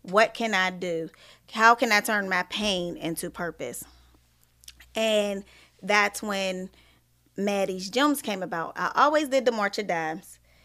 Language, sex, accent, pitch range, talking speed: English, female, American, 175-230 Hz, 145 wpm